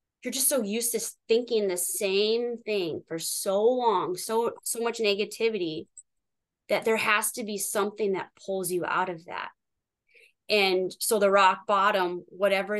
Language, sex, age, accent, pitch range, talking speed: English, female, 20-39, American, 180-225 Hz, 160 wpm